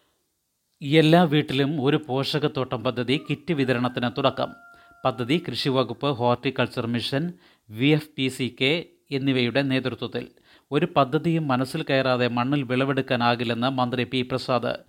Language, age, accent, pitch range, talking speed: Malayalam, 30-49, native, 125-145 Hz, 110 wpm